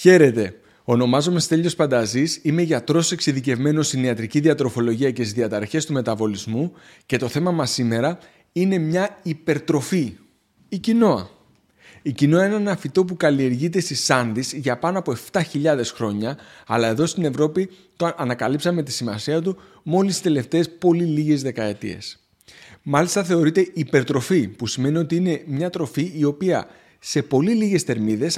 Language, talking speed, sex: Greek, 145 wpm, male